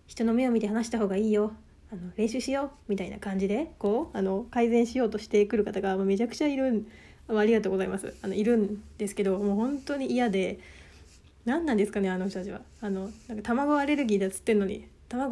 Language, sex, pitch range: Japanese, female, 190-235 Hz